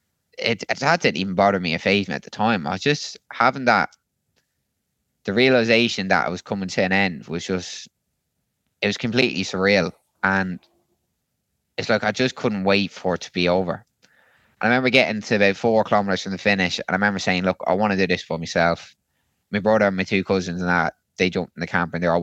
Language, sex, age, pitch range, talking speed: English, male, 20-39, 90-115 Hz, 225 wpm